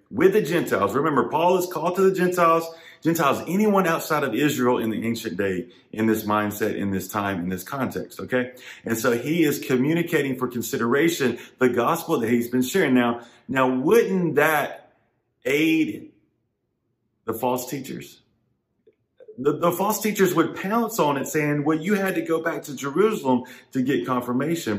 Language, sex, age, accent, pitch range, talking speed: English, male, 40-59, American, 115-165 Hz, 170 wpm